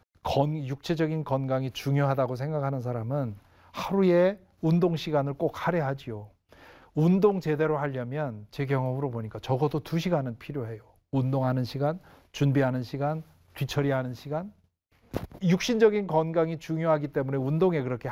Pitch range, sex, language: 120-165 Hz, male, Korean